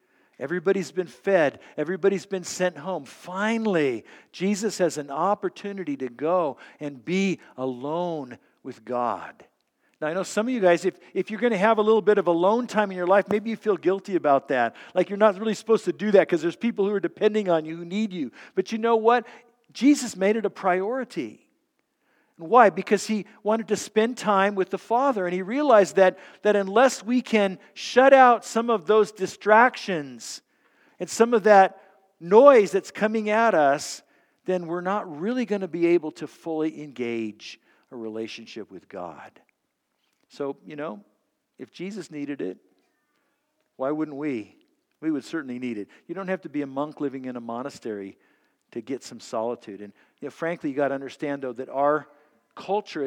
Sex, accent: male, American